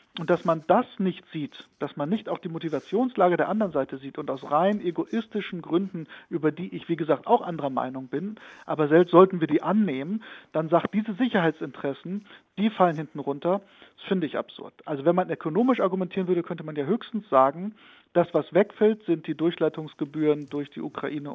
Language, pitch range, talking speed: German, 145-185 Hz, 190 wpm